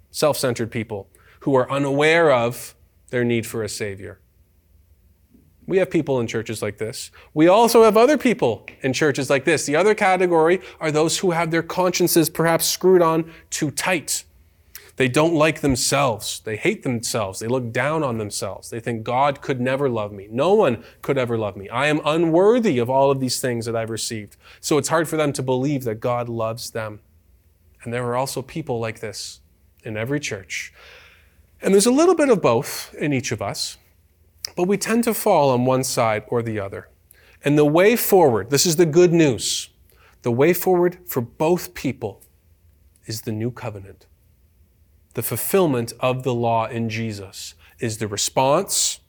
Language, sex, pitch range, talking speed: English, male, 100-155 Hz, 180 wpm